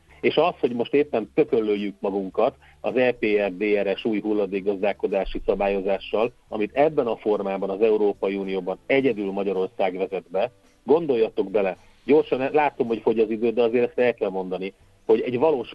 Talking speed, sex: 150 wpm, male